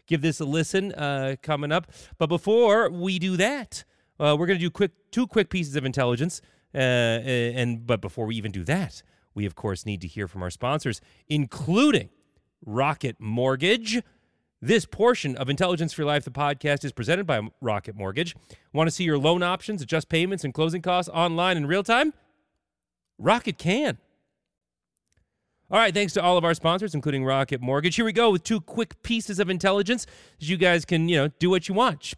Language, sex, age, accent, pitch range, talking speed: English, male, 30-49, American, 140-195 Hz, 195 wpm